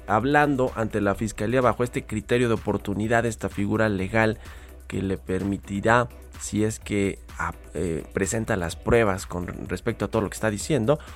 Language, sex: Spanish, male